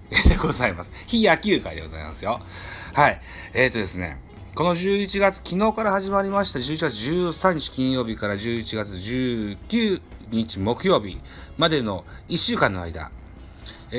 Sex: male